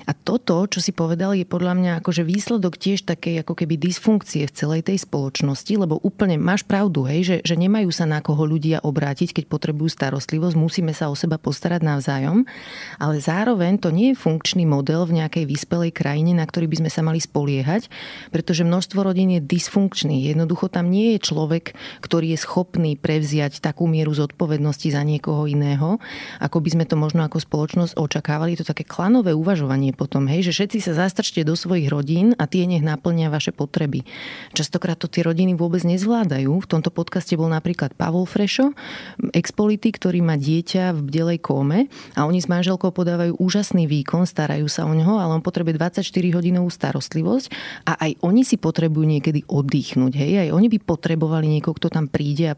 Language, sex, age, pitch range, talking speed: Slovak, female, 30-49, 155-180 Hz, 180 wpm